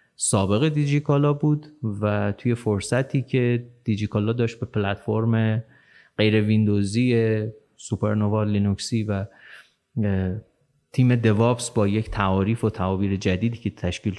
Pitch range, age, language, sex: 105-140 Hz, 30-49, Persian, male